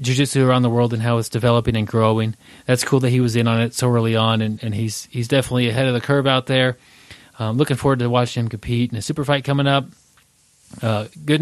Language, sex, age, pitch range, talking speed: English, male, 30-49, 125-150 Hz, 245 wpm